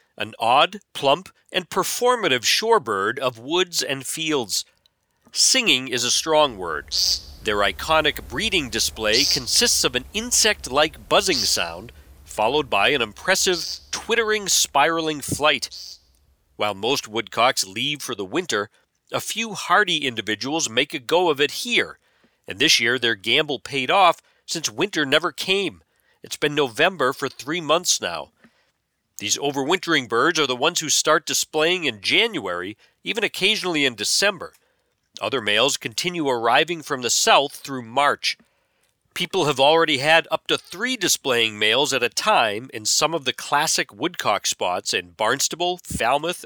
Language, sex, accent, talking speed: English, male, American, 145 wpm